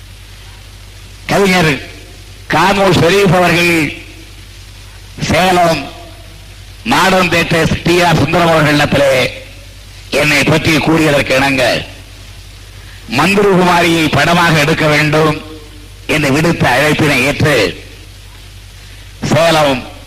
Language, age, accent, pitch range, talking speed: Tamil, 50-69, native, 100-160 Hz, 75 wpm